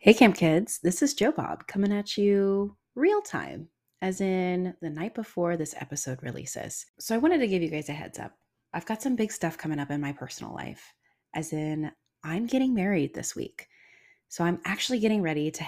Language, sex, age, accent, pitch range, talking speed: English, female, 20-39, American, 150-200 Hz, 205 wpm